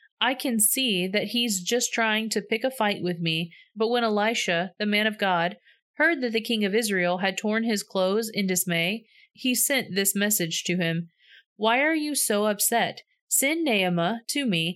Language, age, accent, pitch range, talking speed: English, 30-49, American, 180-230 Hz, 190 wpm